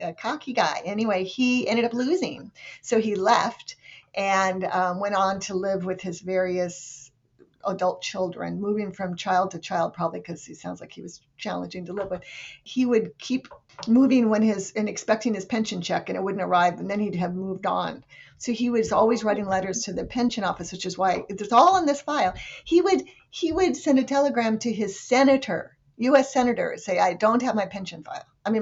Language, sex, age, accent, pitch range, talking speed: English, female, 50-69, American, 185-240 Hz, 205 wpm